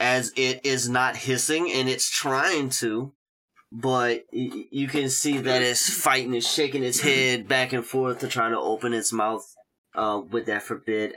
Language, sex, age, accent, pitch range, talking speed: English, male, 20-39, American, 115-140 Hz, 175 wpm